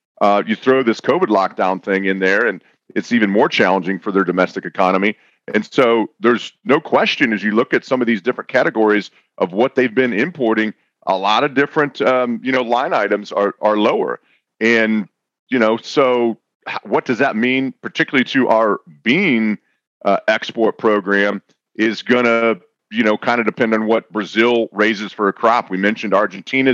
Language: English